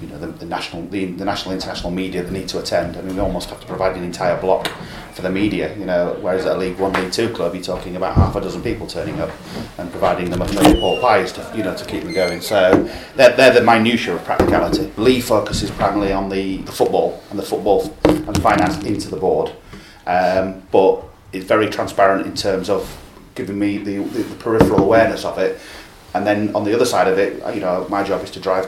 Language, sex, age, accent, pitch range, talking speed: English, male, 30-49, British, 95-105 Hz, 230 wpm